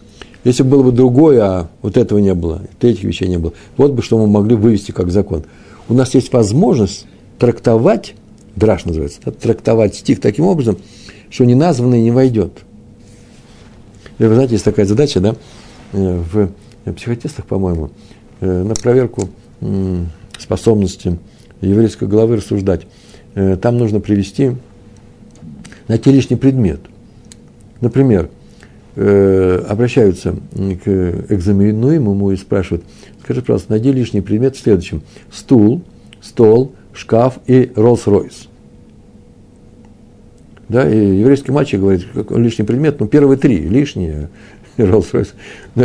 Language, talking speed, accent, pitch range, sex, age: Russian, 125 wpm, native, 95-120 Hz, male, 60-79